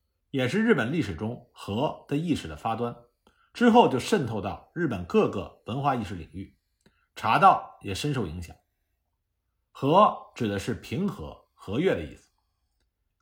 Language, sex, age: Chinese, male, 50-69